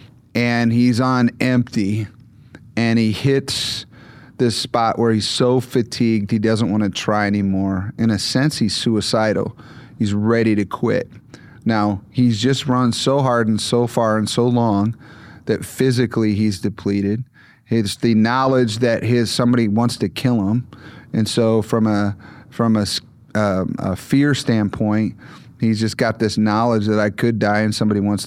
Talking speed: 160 wpm